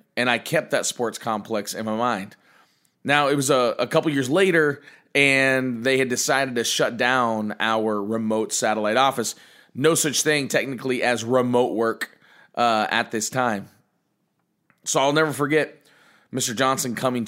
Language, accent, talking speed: English, American, 160 wpm